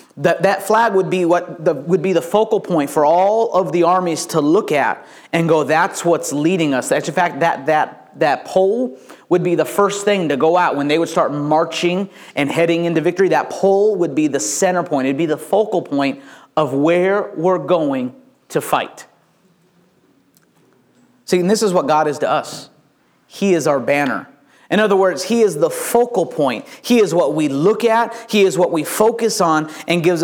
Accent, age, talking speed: American, 30-49, 200 wpm